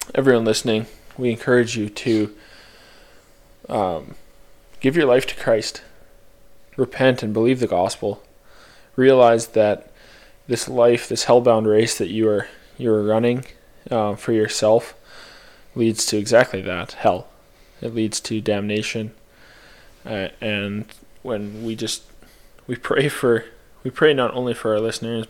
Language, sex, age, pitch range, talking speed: English, male, 20-39, 110-120 Hz, 135 wpm